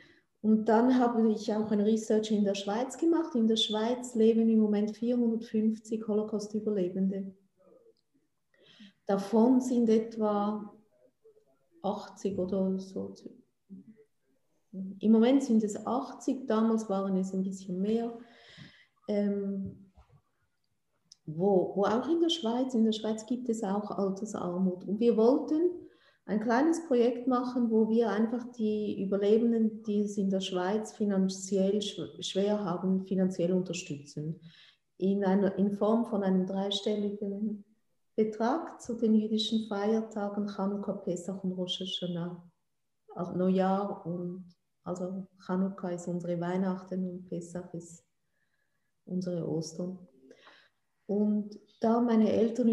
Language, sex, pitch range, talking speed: German, female, 190-225 Hz, 120 wpm